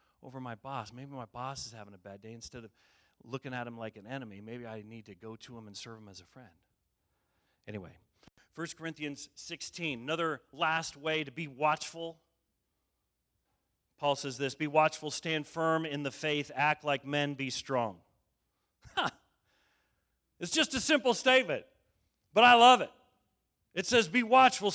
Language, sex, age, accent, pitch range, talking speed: English, male, 40-59, American, 115-170 Hz, 170 wpm